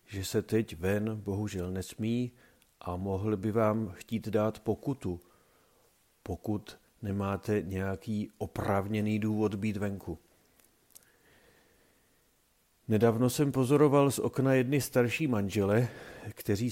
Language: Czech